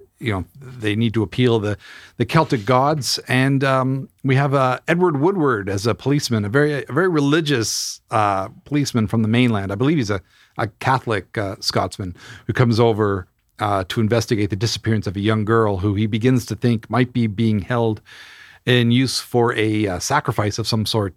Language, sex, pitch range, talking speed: English, male, 105-125 Hz, 195 wpm